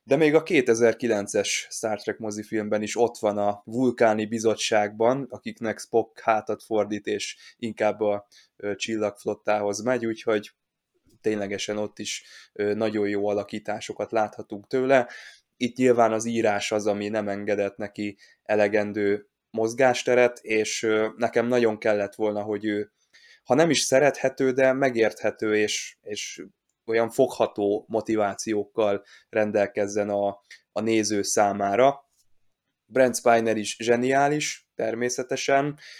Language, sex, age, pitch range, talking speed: Hungarian, male, 20-39, 105-125 Hz, 115 wpm